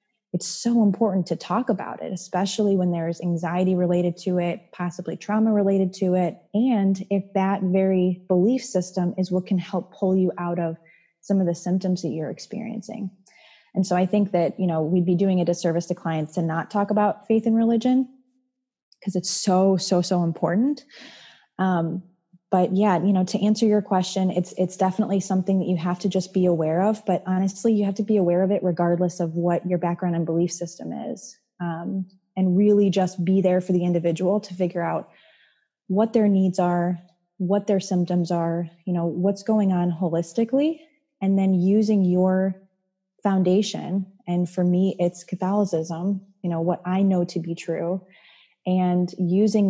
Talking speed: 185 wpm